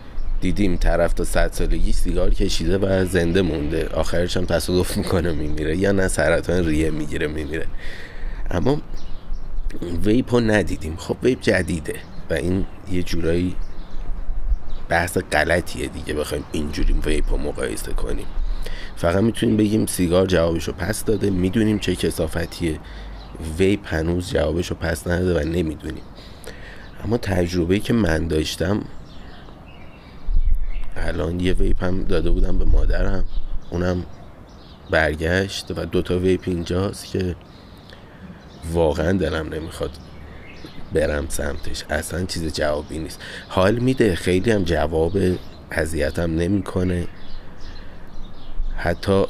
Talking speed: 120 wpm